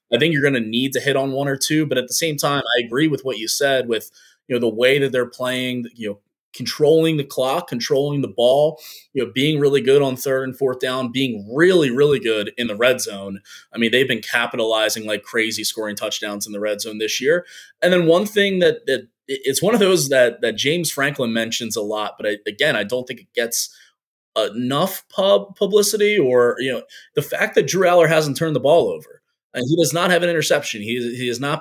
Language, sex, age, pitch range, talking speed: English, male, 20-39, 115-150 Hz, 235 wpm